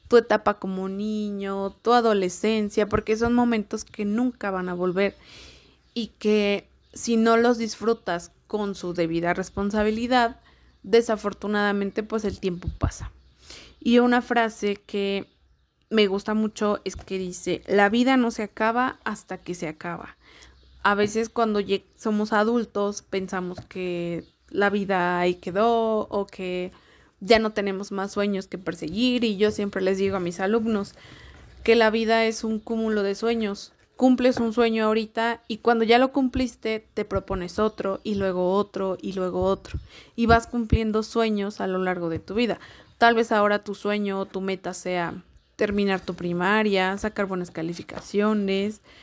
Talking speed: 155 wpm